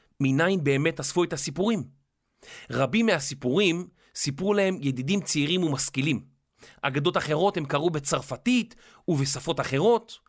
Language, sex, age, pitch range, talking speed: Hebrew, male, 30-49, 135-195 Hz, 110 wpm